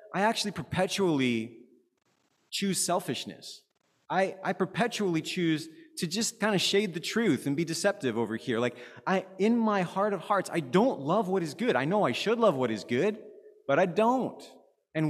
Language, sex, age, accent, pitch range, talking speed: English, male, 30-49, American, 125-190 Hz, 185 wpm